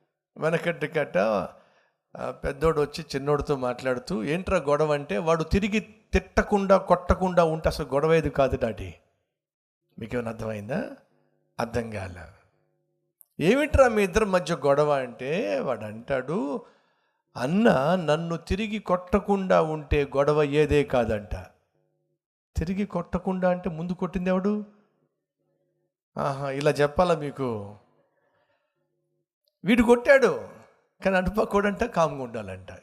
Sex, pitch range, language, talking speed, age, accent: male, 140-205 Hz, Telugu, 100 wpm, 60-79, native